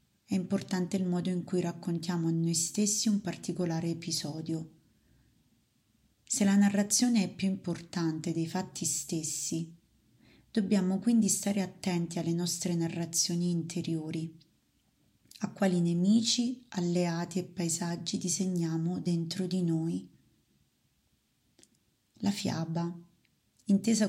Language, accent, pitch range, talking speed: Italian, native, 165-195 Hz, 105 wpm